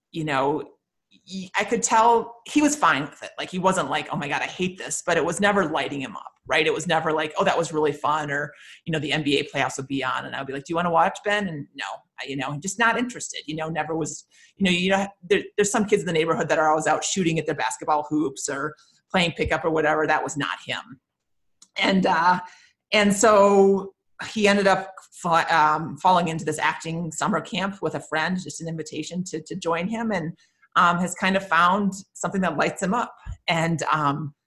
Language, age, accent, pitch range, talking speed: English, 30-49, American, 155-195 Hz, 235 wpm